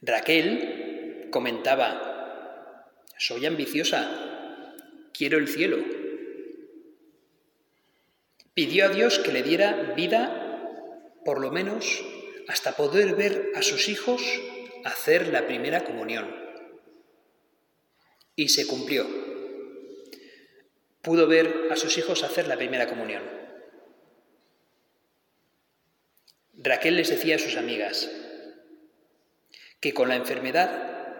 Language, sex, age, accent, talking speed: Spanish, male, 40-59, Spanish, 95 wpm